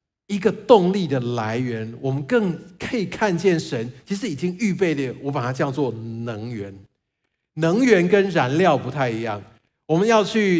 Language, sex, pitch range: Chinese, male, 140-205 Hz